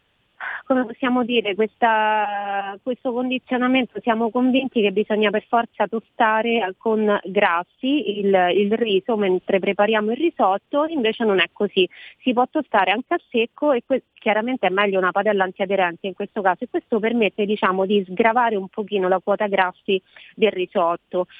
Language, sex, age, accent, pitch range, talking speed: Italian, female, 30-49, native, 195-235 Hz, 155 wpm